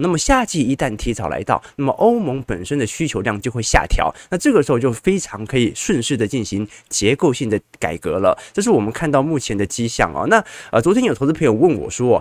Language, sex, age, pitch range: Chinese, male, 20-39, 110-165 Hz